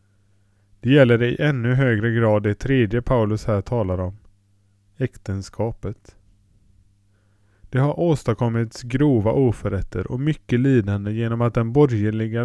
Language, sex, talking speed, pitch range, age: Swedish, male, 125 wpm, 100-125 Hz, 20-39